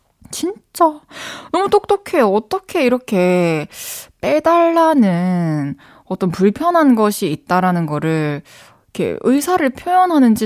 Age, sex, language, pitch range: 20-39, female, Korean, 180-265 Hz